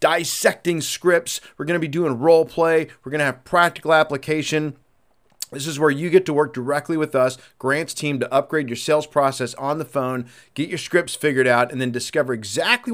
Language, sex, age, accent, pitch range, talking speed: English, male, 40-59, American, 130-175 Hz, 205 wpm